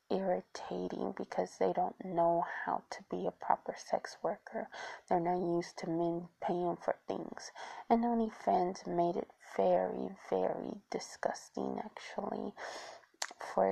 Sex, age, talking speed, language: female, 20-39, 130 wpm, English